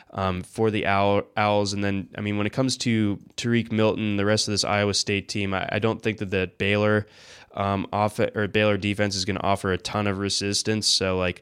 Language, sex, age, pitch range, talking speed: English, male, 20-39, 95-105 Hz, 230 wpm